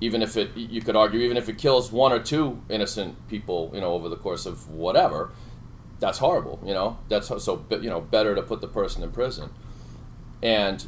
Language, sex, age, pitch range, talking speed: English, male, 40-59, 90-115 Hz, 210 wpm